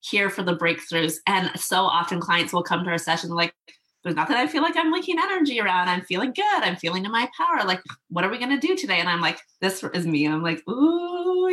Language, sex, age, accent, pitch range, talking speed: English, female, 20-39, American, 175-220 Hz, 255 wpm